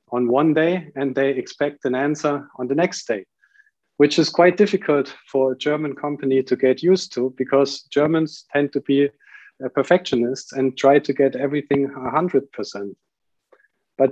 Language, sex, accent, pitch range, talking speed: English, male, German, 130-160 Hz, 165 wpm